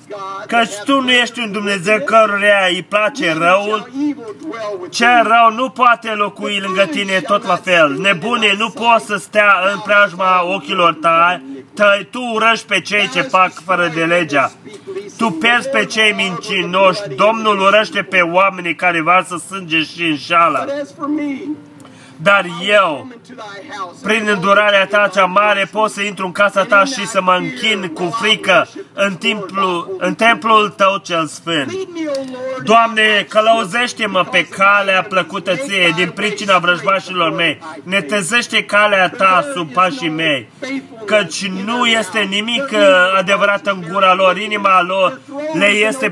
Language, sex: Romanian, male